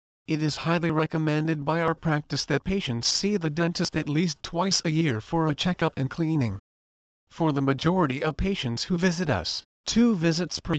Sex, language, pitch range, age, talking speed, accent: male, English, 135-170 Hz, 50-69, 185 wpm, American